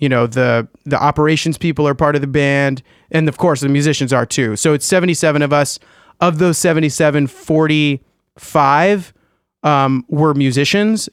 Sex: male